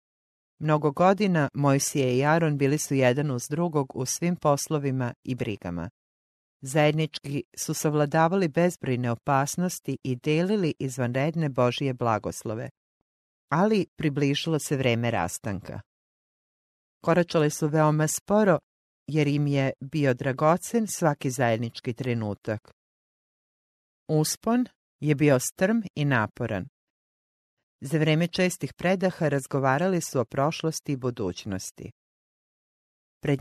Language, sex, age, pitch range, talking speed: English, female, 40-59, 125-160 Hz, 105 wpm